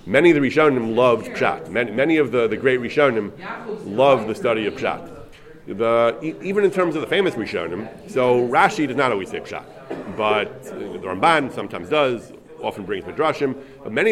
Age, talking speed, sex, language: 30-49, 180 wpm, male, English